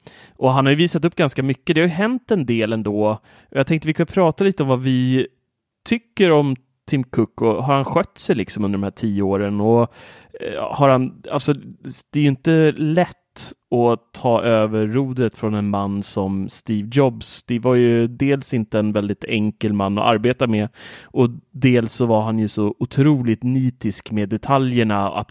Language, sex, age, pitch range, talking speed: Swedish, male, 30-49, 105-130 Hz, 195 wpm